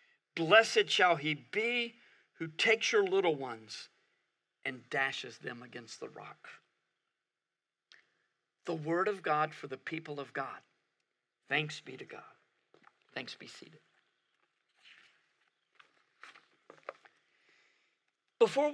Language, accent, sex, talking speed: English, American, male, 100 wpm